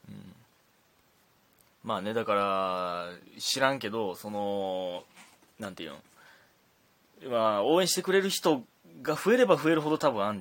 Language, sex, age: Japanese, male, 20-39